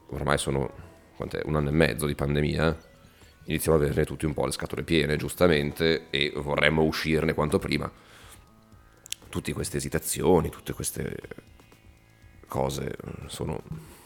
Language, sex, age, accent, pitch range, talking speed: Italian, male, 30-49, native, 75-95 Hz, 130 wpm